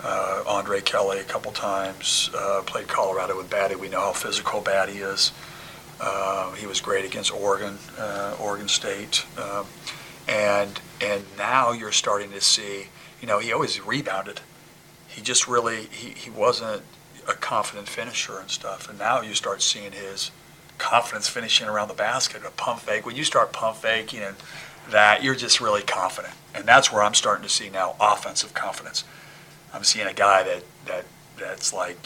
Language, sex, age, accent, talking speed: English, male, 40-59, American, 180 wpm